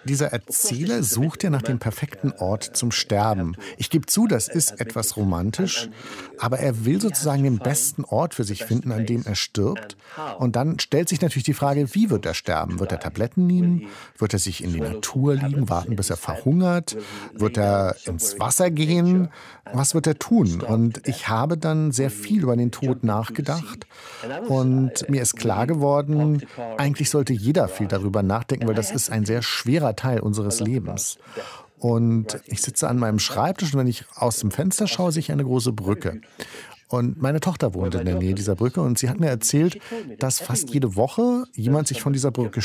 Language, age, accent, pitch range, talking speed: German, 50-69, German, 110-150 Hz, 195 wpm